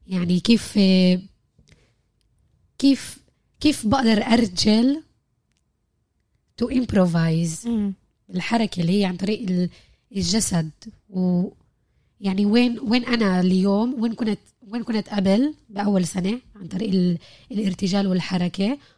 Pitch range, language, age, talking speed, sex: 185-225 Hz, Arabic, 20-39, 95 wpm, female